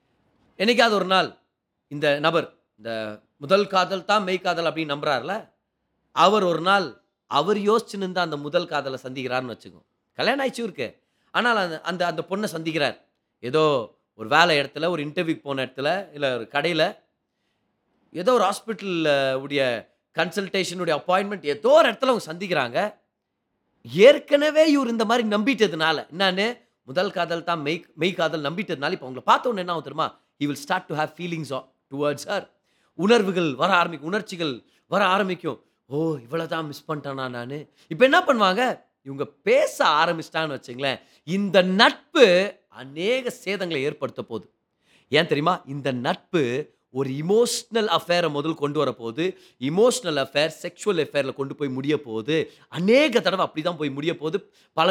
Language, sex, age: Tamil, male, 30-49